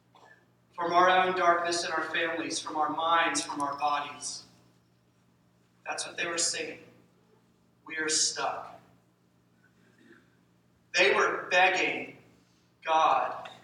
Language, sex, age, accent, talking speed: English, male, 40-59, American, 110 wpm